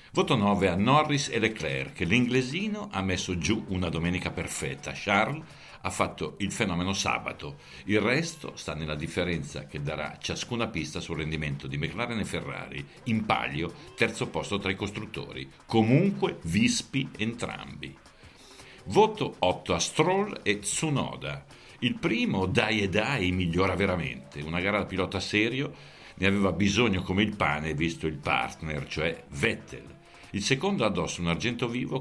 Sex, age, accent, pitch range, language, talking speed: male, 60-79, native, 80-115 Hz, Italian, 150 wpm